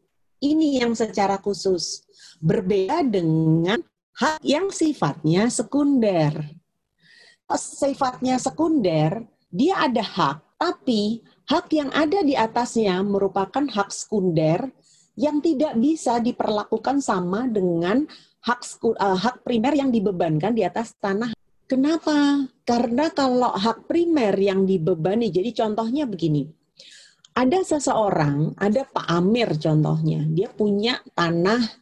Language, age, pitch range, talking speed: Indonesian, 40-59, 180-265 Hz, 105 wpm